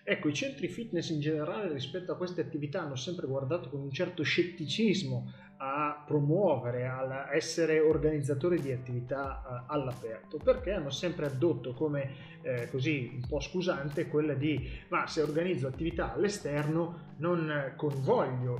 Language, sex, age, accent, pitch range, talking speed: Italian, male, 30-49, native, 145-190 Hz, 140 wpm